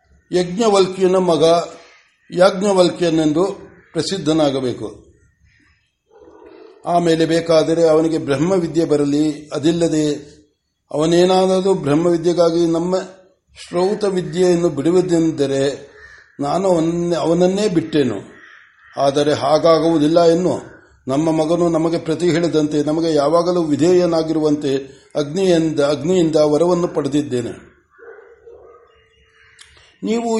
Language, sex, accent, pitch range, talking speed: Kannada, male, native, 150-180 Hz, 70 wpm